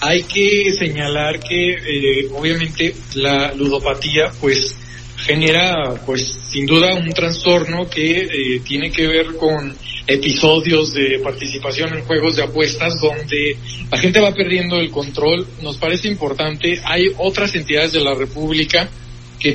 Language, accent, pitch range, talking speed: Spanish, Mexican, 145-170 Hz, 140 wpm